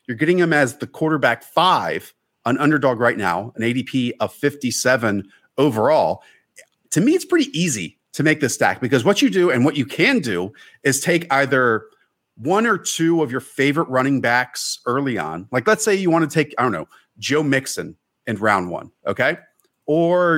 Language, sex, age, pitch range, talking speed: English, male, 40-59, 110-145 Hz, 190 wpm